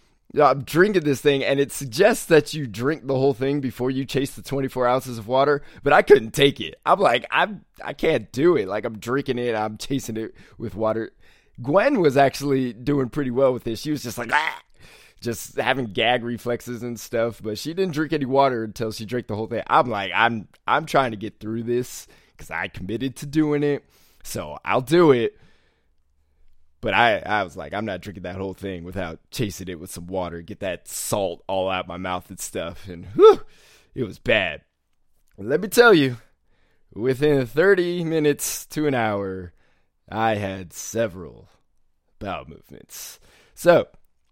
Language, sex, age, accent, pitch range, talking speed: English, male, 20-39, American, 100-140 Hz, 190 wpm